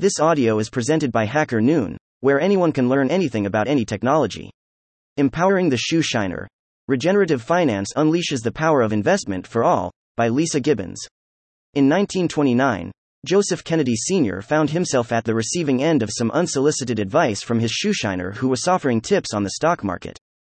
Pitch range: 105-155 Hz